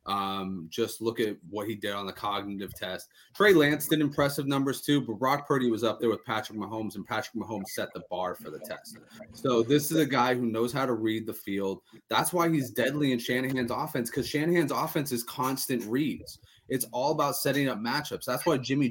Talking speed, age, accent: 220 wpm, 30-49, American